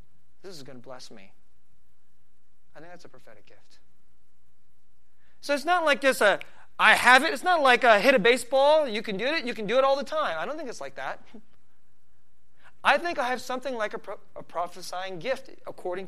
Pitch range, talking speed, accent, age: 185-265 Hz, 210 wpm, American, 30-49